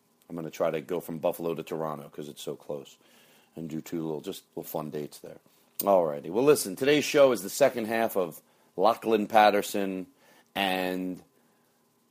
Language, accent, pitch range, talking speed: English, American, 80-140 Hz, 185 wpm